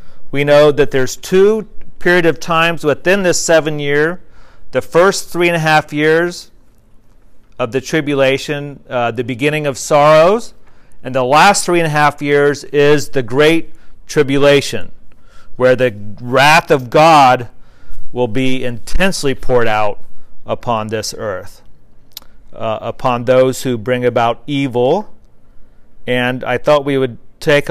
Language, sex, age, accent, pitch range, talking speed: English, male, 40-59, American, 120-155 Hz, 140 wpm